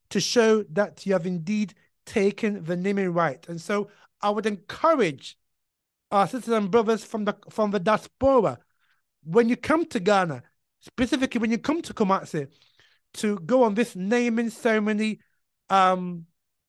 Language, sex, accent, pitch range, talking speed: English, male, British, 190-235 Hz, 150 wpm